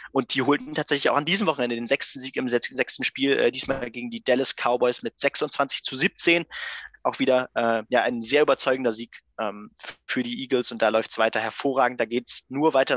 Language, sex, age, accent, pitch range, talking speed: German, male, 20-39, German, 115-135 Hz, 215 wpm